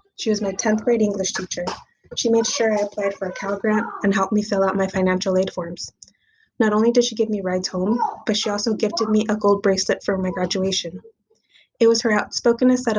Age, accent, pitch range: 20-39, American, 190-215 Hz